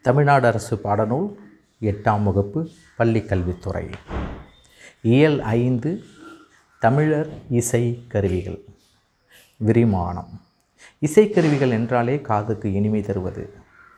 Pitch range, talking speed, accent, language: 100-130 Hz, 75 wpm, native, Tamil